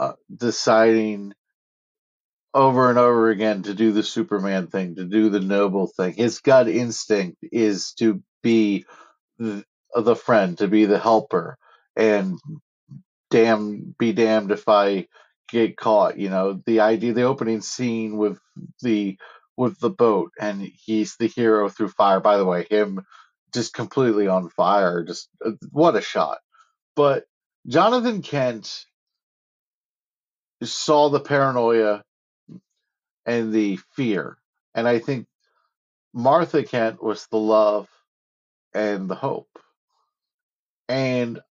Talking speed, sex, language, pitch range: 130 wpm, male, English, 105-140 Hz